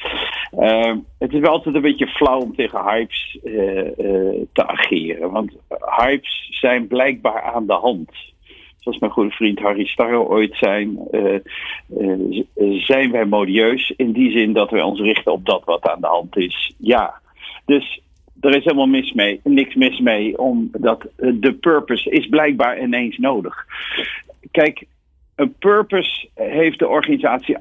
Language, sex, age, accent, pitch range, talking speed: Dutch, male, 50-69, Dutch, 105-150 Hz, 150 wpm